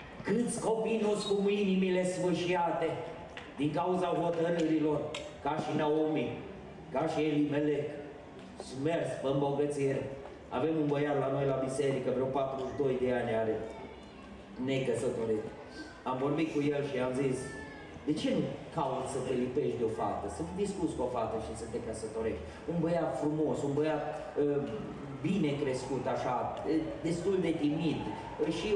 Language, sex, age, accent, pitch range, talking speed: Romanian, male, 30-49, native, 135-175 Hz, 150 wpm